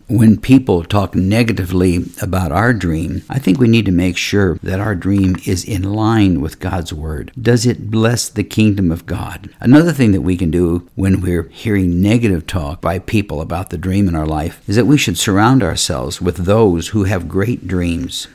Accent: American